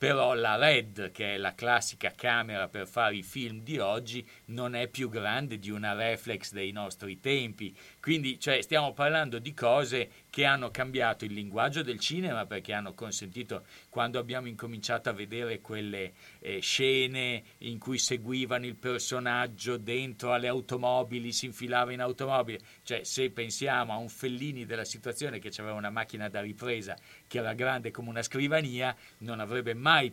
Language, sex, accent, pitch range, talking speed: Italian, male, native, 110-130 Hz, 165 wpm